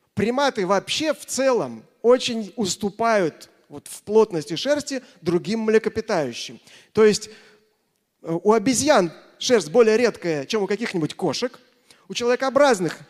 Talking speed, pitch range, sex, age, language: 115 wpm, 175-220 Hz, male, 30-49, Russian